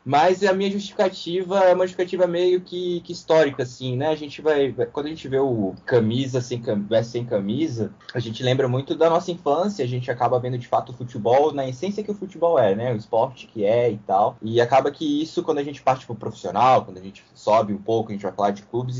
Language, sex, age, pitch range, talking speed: Portuguese, male, 20-39, 115-165 Hz, 235 wpm